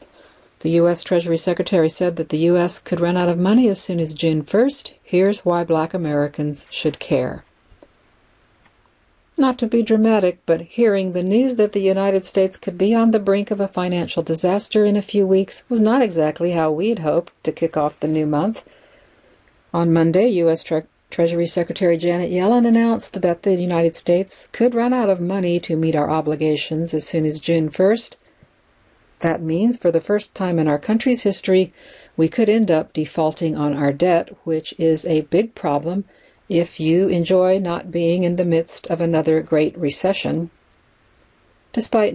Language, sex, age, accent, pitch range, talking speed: English, female, 60-79, American, 165-200 Hz, 175 wpm